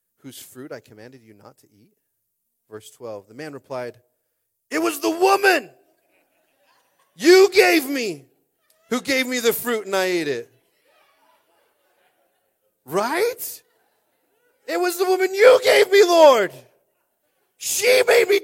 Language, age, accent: English, 40-59, American